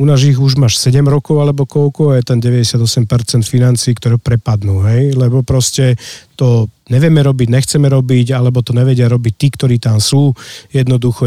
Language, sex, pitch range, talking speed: Slovak, male, 120-140 Hz, 170 wpm